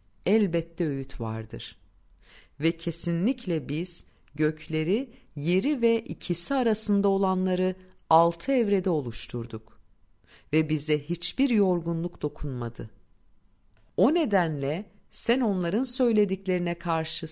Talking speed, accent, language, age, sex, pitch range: 90 wpm, native, Turkish, 50-69, female, 135-195 Hz